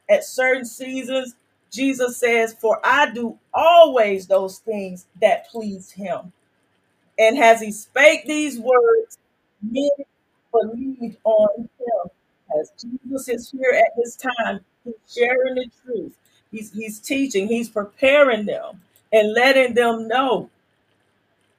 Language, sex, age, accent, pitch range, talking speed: English, female, 40-59, American, 220-260 Hz, 125 wpm